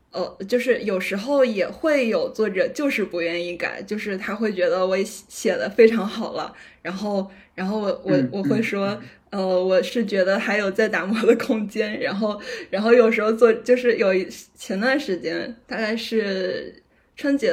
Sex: female